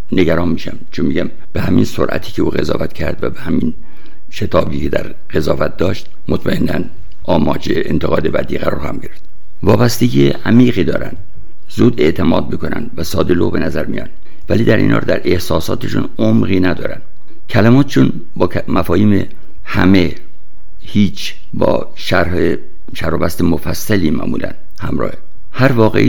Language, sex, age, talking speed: Persian, male, 60-79, 135 wpm